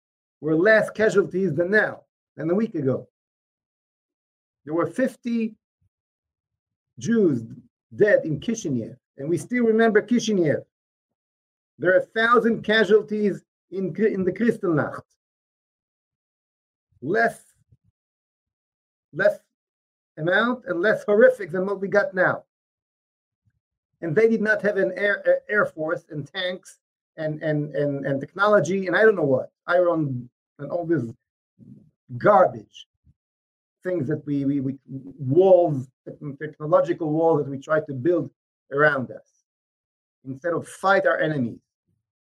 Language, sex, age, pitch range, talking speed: English, male, 50-69, 130-195 Hz, 125 wpm